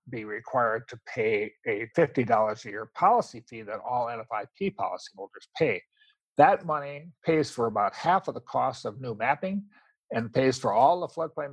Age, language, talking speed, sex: 50-69, English, 170 wpm, male